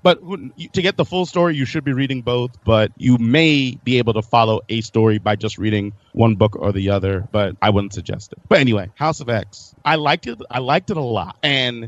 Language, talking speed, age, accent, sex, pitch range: English, 235 wpm, 30-49, American, male, 110-135 Hz